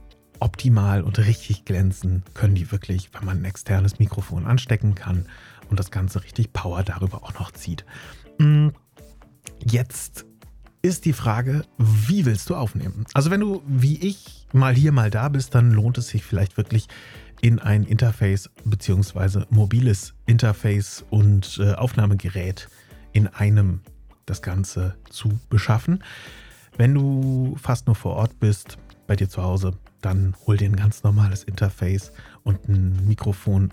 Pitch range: 100-120 Hz